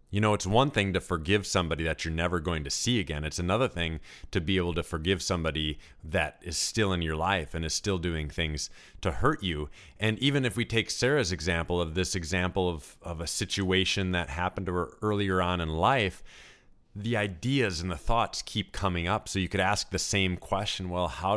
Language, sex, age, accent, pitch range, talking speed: English, male, 30-49, American, 85-105 Hz, 215 wpm